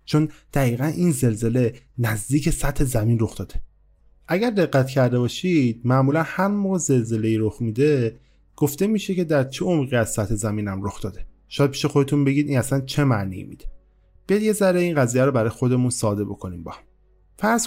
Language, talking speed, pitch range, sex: Persian, 175 wpm, 115-150 Hz, male